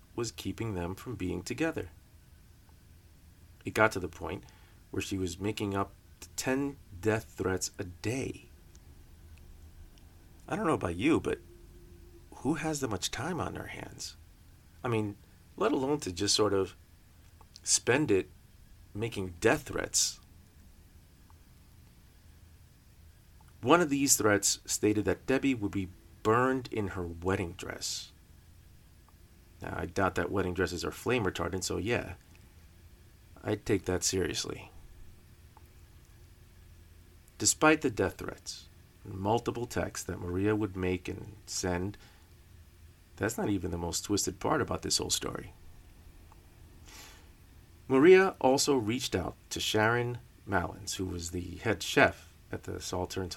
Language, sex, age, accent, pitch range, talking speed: English, male, 40-59, American, 85-100 Hz, 130 wpm